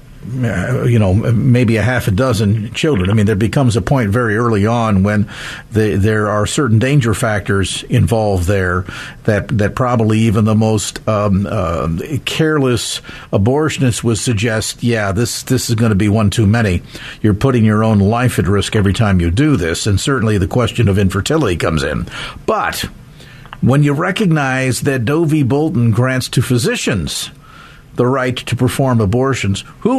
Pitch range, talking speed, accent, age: 115-150 Hz, 165 wpm, American, 50-69